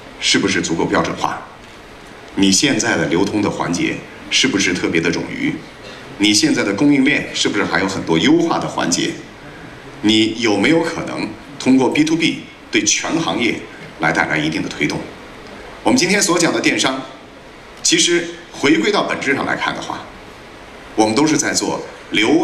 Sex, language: male, Chinese